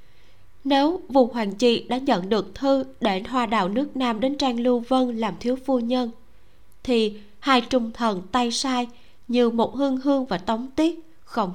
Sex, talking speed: female, 180 wpm